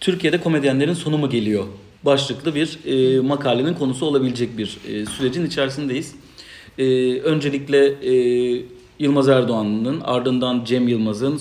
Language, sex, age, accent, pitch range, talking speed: Turkish, male, 40-59, native, 120-155 Hz, 120 wpm